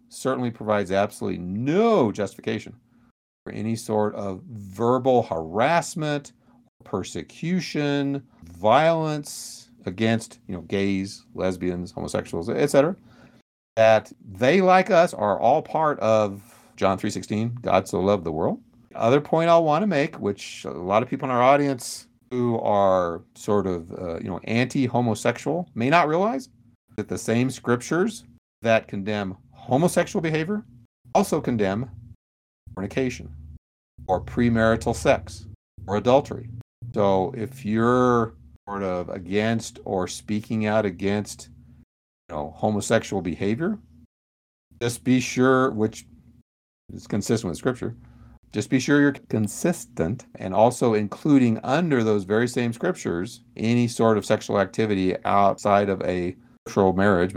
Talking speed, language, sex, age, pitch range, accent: 130 wpm, English, male, 50-69, 95-125 Hz, American